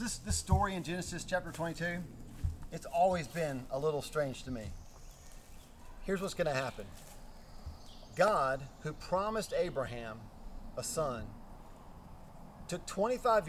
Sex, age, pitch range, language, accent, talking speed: male, 40-59, 120-180 Hz, English, American, 120 wpm